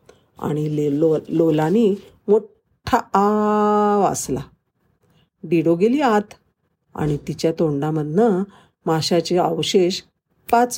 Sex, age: female, 50-69